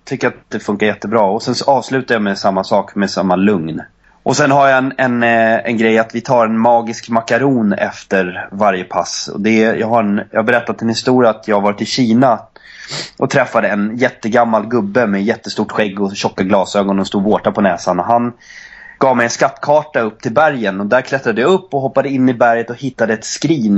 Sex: male